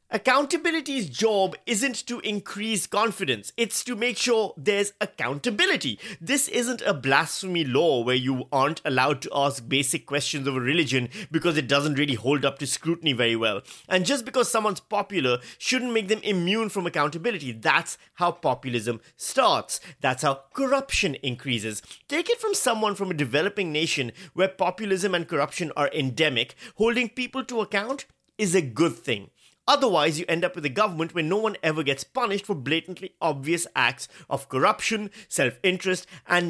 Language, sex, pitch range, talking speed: English, male, 140-205 Hz, 165 wpm